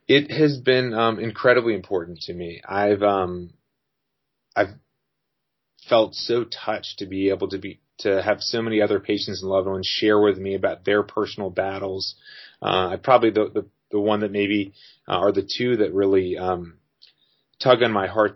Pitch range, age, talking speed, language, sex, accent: 95-110 Hz, 30-49, 180 wpm, English, male, American